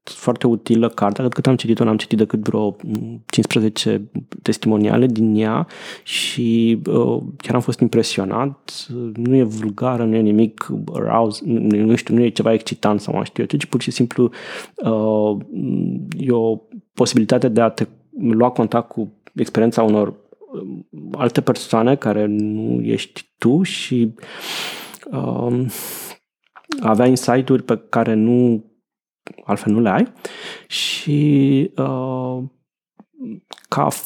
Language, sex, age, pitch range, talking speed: Romanian, male, 20-39, 110-125 Hz, 135 wpm